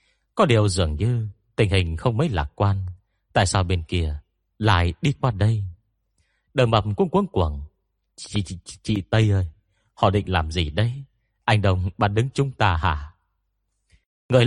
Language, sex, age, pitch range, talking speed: Vietnamese, male, 30-49, 90-115 Hz, 170 wpm